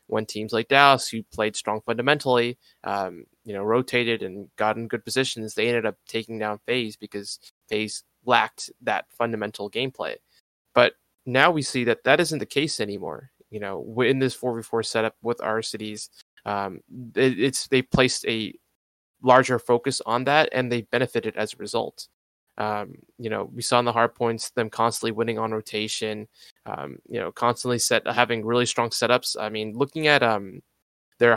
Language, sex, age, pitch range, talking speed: English, male, 20-39, 110-125 Hz, 180 wpm